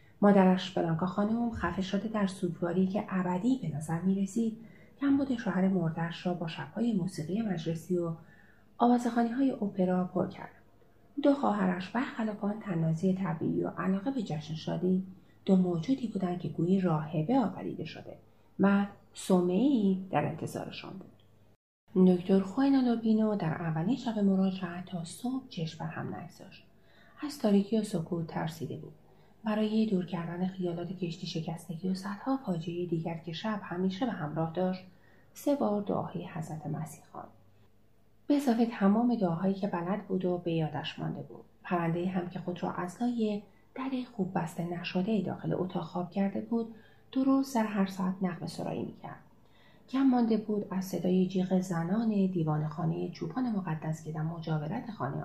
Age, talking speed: 30-49, 150 wpm